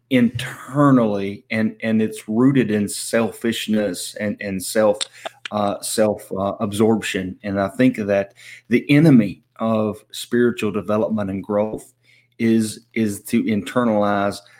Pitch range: 105-130 Hz